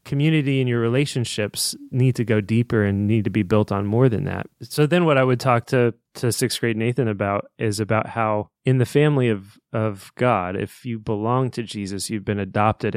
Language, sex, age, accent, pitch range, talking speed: English, male, 20-39, American, 105-130 Hz, 215 wpm